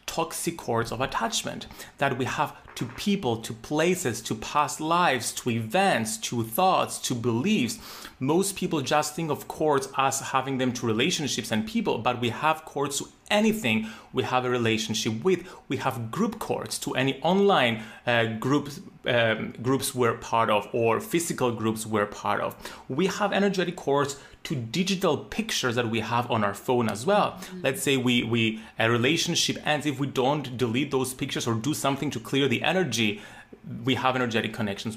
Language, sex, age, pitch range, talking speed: English, male, 30-49, 120-160 Hz, 175 wpm